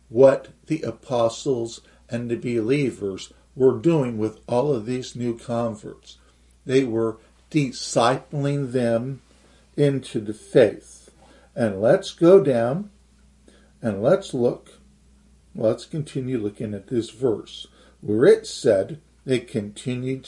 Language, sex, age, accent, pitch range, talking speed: English, male, 60-79, American, 110-140 Hz, 115 wpm